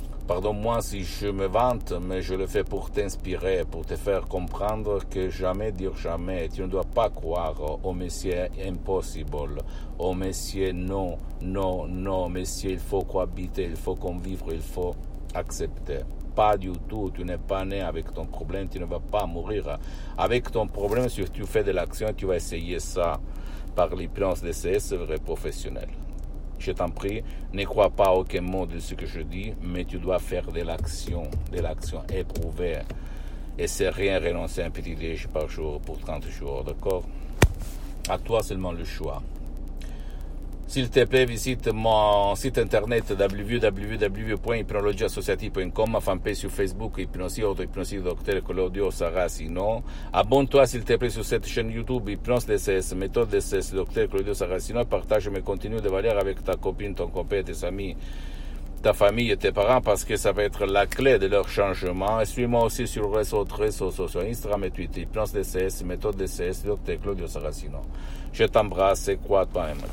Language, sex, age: Italian, male, 60-79